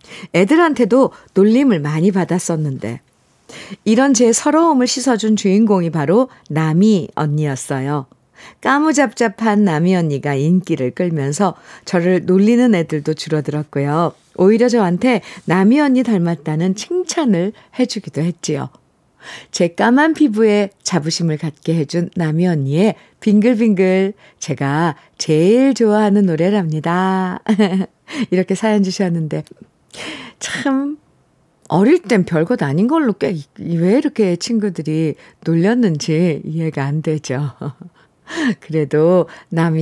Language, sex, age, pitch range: Korean, female, 50-69, 160-225 Hz